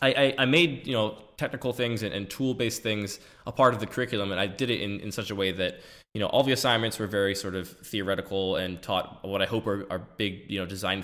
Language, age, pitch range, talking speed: English, 20-39, 95-115 Hz, 255 wpm